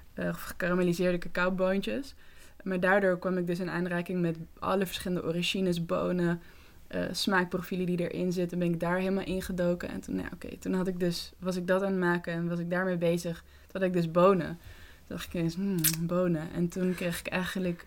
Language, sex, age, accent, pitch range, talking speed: Dutch, female, 20-39, Dutch, 170-190 Hz, 200 wpm